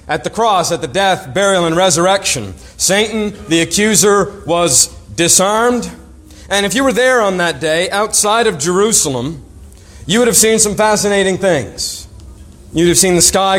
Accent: American